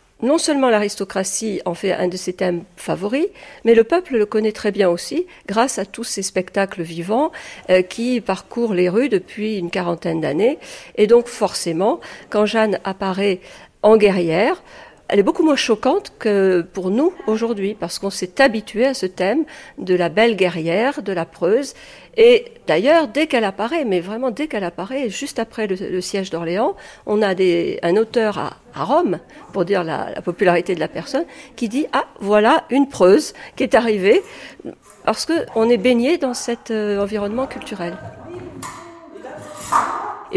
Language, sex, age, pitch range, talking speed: French, female, 50-69, 185-245 Hz, 170 wpm